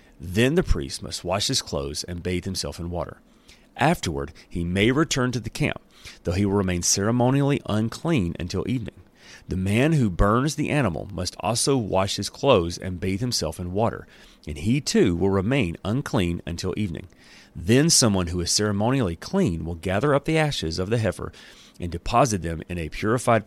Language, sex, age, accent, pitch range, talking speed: English, male, 40-59, American, 85-120 Hz, 180 wpm